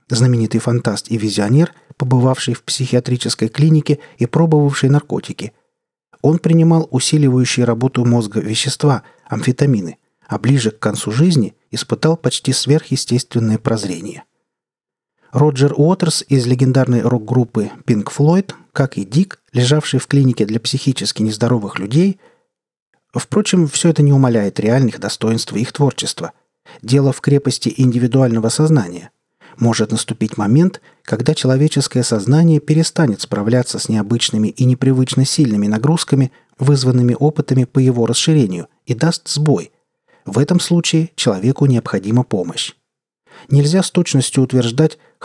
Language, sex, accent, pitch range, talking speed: Russian, male, native, 115-150 Hz, 120 wpm